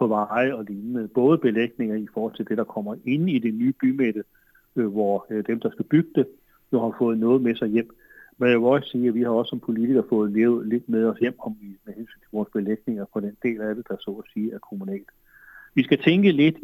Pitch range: 110-135 Hz